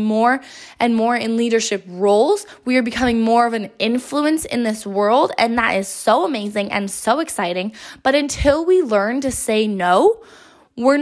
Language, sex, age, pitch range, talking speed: English, female, 10-29, 220-280 Hz, 175 wpm